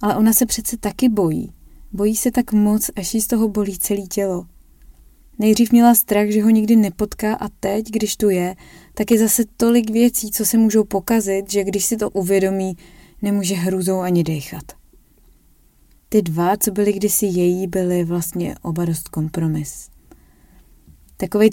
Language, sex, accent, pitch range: Czech, female, native, 170-205 Hz